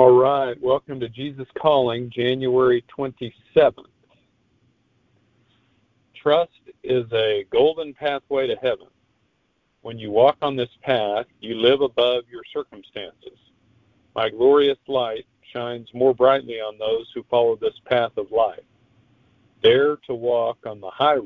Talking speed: 130 wpm